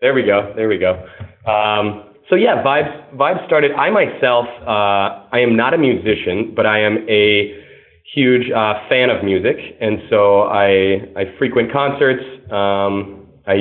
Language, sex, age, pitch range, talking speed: English, male, 30-49, 100-120 Hz, 165 wpm